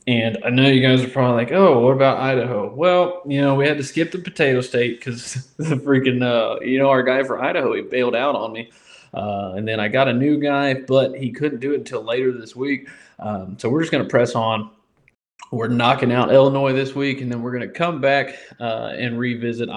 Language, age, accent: English, 20-39, American